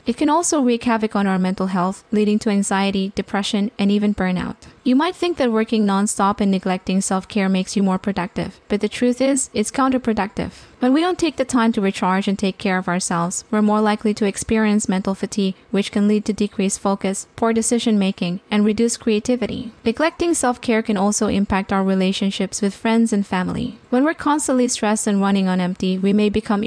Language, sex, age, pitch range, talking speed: English, female, 20-39, 195-225 Hz, 200 wpm